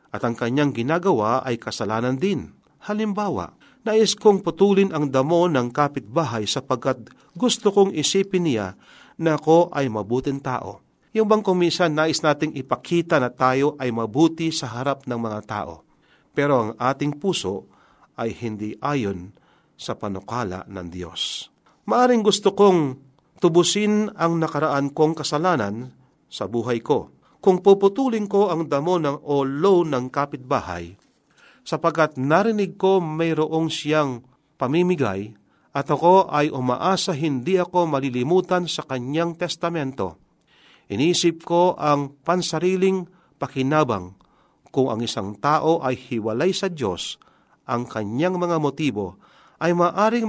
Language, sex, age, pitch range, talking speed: Filipino, male, 40-59, 125-175 Hz, 125 wpm